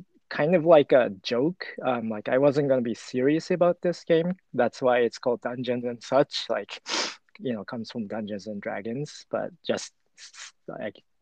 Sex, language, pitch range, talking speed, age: male, English, 110-135 Hz, 180 wpm, 20-39